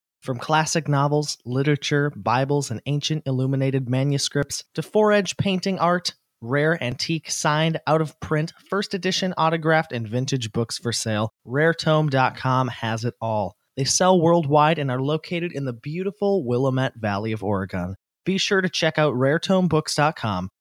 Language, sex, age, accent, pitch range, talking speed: English, male, 20-39, American, 115-160 Hz, 140 wpm